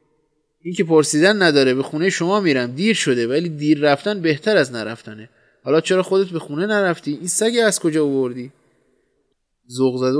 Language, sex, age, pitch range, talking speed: Persian, male, 20-39, 125-175 Hz, 170 wpm